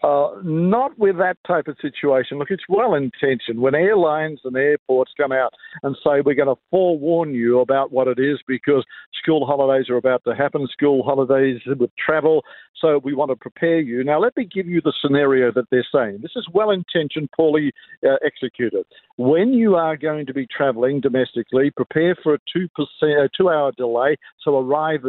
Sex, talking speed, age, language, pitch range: male, 180 wpm, 50-69, English, 135-175 Hz